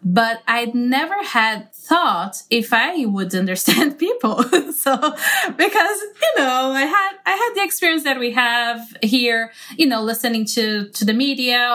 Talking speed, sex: 165 wpm, female